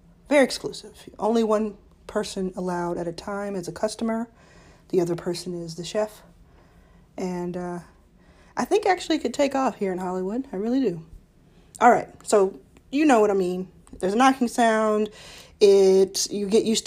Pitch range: 185-235 Hz